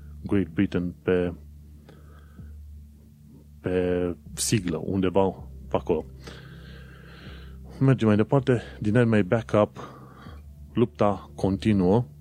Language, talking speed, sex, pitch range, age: Romanian, 85 wpm, male, 75-100 Hz, 30-49